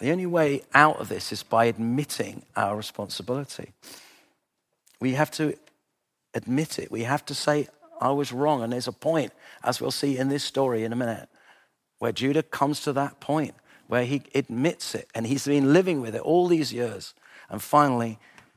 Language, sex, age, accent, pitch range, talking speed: English, male, 40-59, British, 115-150 Hz, 185 wpm